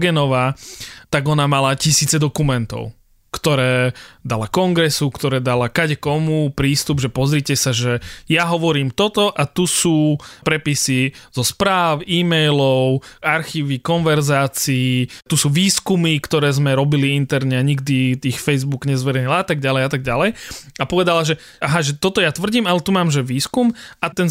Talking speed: 145 wpm